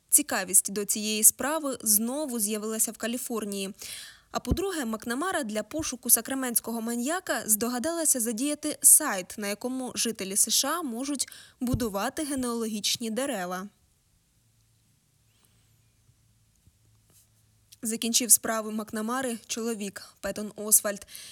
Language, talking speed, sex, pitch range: Ukrainian, 90 wpm, female, 215-250 Hz